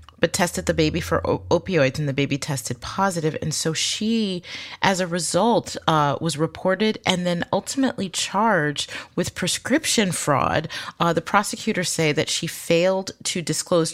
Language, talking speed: English, 155 wpm